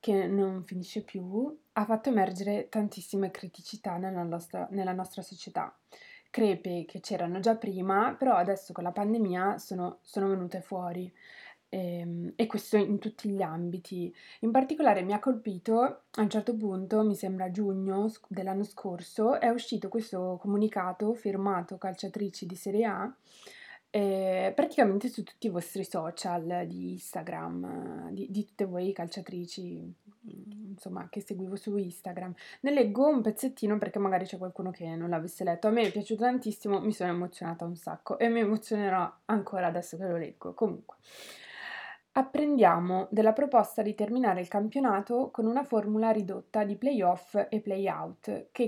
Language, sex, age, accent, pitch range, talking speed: Italian, female, 20-39, native, 185-220 Hz, 155 wpm